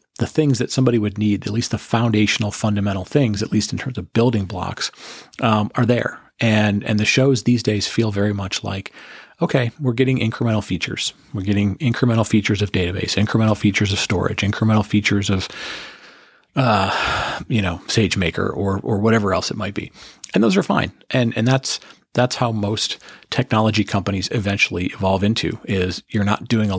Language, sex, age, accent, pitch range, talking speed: English, male, 40-59, American, 100-115 Hz, 180 wpm